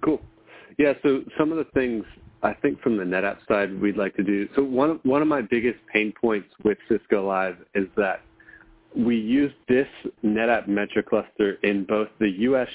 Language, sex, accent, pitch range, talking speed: English, male, American, 100-125 Hz, 190 wpm